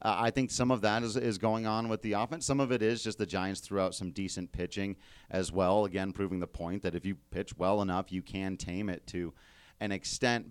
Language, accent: English, American